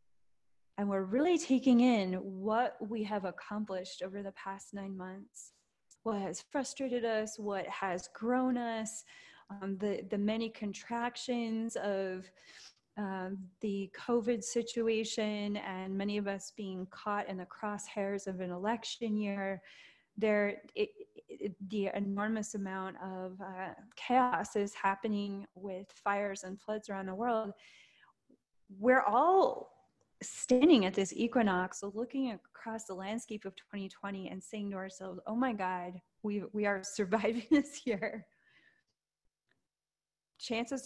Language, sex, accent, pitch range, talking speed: English, female, American, 195-230 Hz, 130 wpm